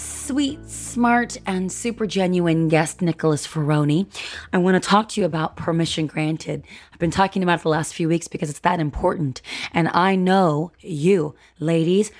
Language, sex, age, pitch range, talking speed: English, female, 20-39, 160-195 Hz, 175 wpm